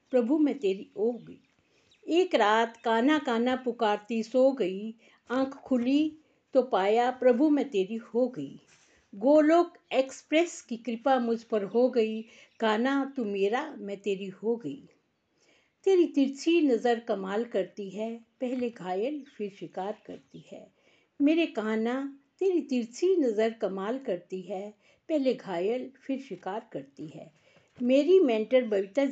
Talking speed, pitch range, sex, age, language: 135 wpm, 210-275 Hz, female, 50-69, Hindi